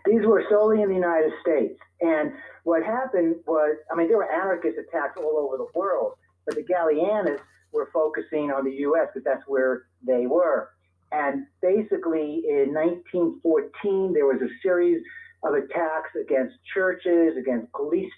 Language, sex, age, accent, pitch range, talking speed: English, male, 50-69, American, 155-220 Hz, 160 wpm